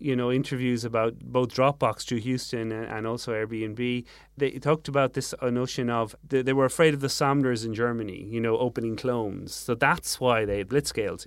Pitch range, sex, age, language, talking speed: 115-145 Hz, male, 30-49, English, 180 wpm